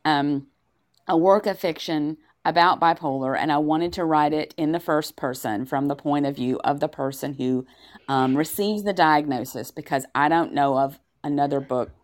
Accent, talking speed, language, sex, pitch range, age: American, 185 wpm, English, female, 145-180 Hz, 40-59